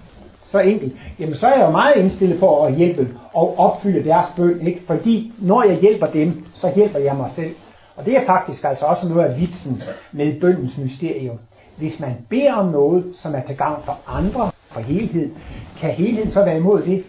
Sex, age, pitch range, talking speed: male, 60-79, 145-195 Hz, 205 wpm